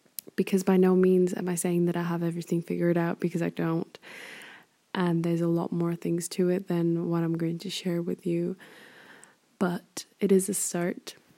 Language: English